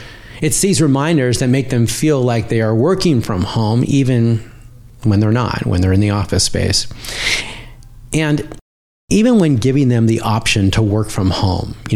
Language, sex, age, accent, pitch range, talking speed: English, male, 40-59, American, 105-130 Hz, 175 wpm